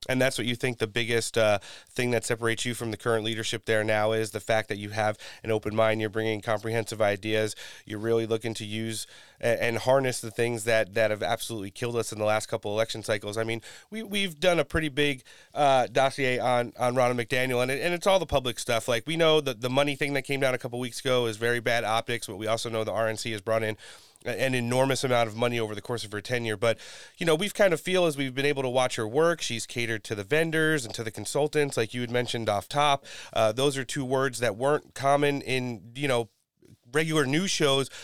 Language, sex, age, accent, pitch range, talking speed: English, male, 30-49, American, 115-140 Hz, 250 wpm